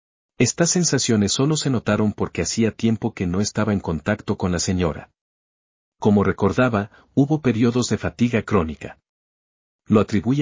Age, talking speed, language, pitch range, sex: 50-69, 145 wpm, Spanish, 95-120 Hz, male